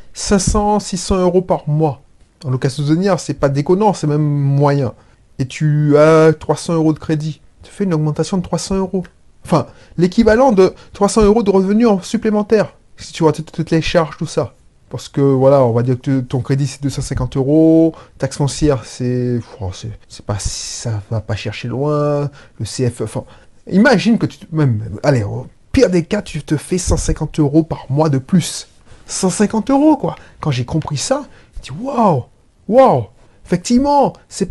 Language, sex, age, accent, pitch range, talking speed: French, male, 30-49, French, 135-200 Hz, 185 wpm